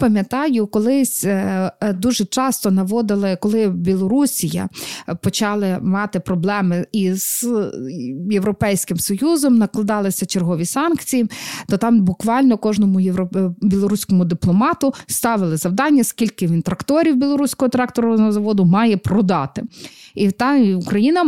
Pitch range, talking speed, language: 185-250 Hz, 105 wpm, Ukrainian